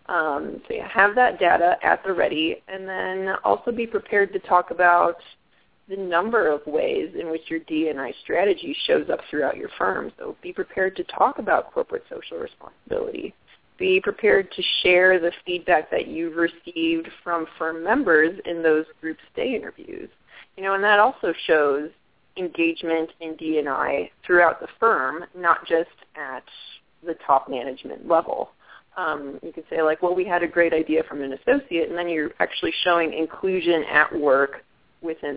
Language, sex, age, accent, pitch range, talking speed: English, female, 20-39, American, 160-215 Hz, 170 wpm